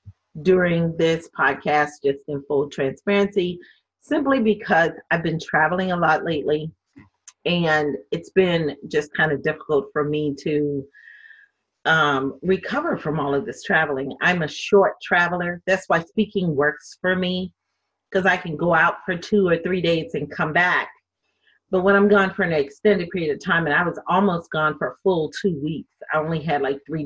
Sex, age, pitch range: female, 40-59, 150-200 Hz